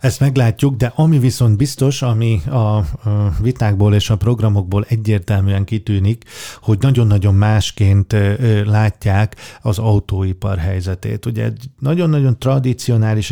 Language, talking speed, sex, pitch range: Hungarian, 115 wpm, male, 100-115 Hz